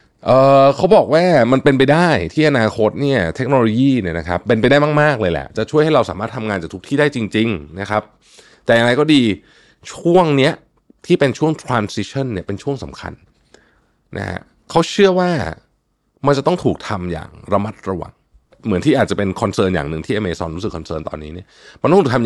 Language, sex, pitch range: Thai, male, 90-135 Hz